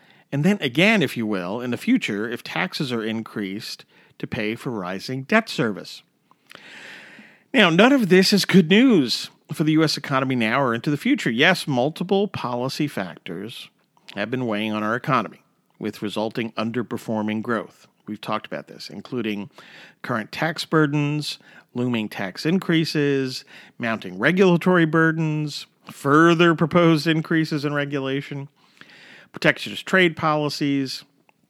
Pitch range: 115-165 Hz